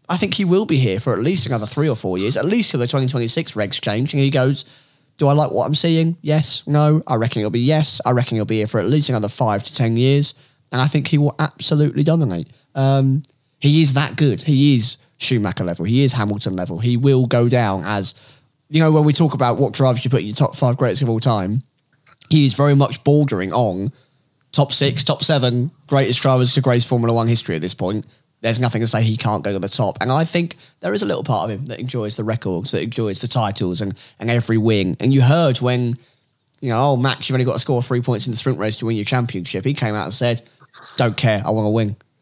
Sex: male